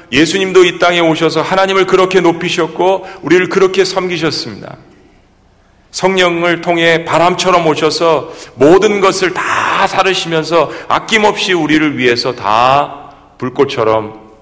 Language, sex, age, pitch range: Korean, male, 40-59, 150-185 Hz